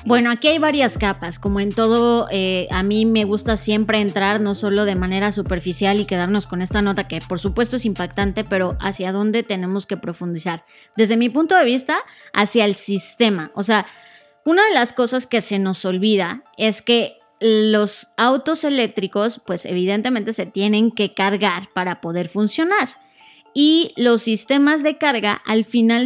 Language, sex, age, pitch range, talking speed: Spanish, female, 20-39, 200-245 Hz, 175 wpm